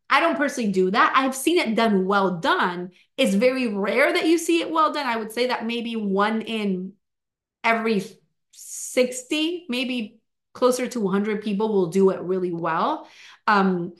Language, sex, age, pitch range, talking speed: English, female, 30-49, 195-255 Hz, 170 wpm